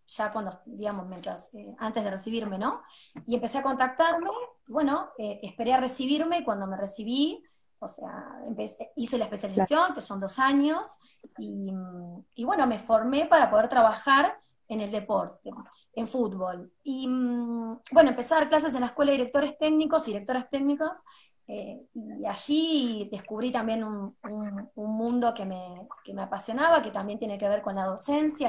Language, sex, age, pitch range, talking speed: Spanish, female, 20-39, 210-280 Hz, 165 wpm